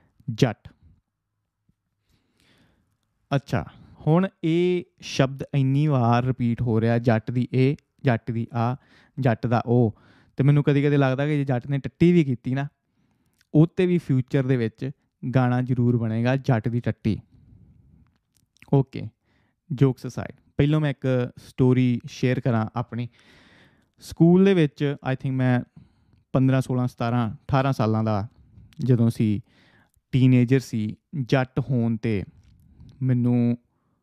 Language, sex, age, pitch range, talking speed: Punjabi, male, 20-39, 115-140 Hz, 115 wpm